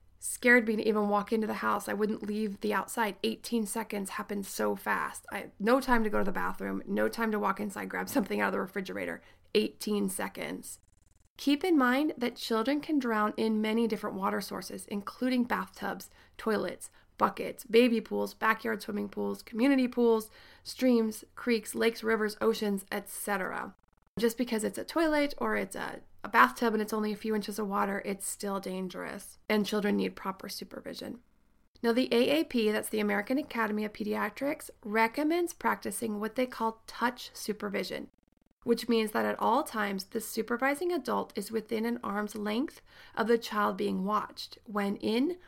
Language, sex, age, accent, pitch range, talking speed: English, female, 20-39, American, 210-245 Hz, 175 wpm